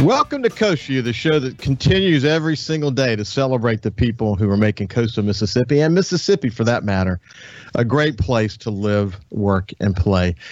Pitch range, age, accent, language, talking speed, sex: 105-140 Hz, 50-69, American, English, 185 wpm, male